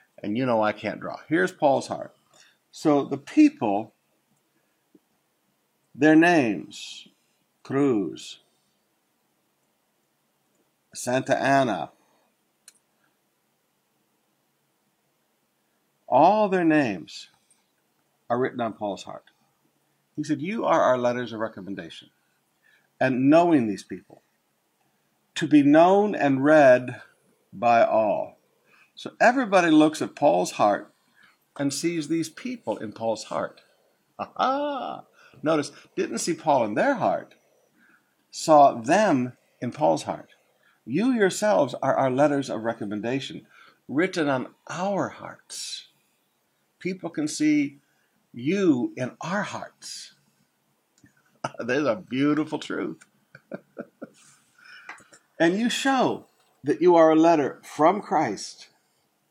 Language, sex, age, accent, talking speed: English, male, 60-79, American, 105 wpm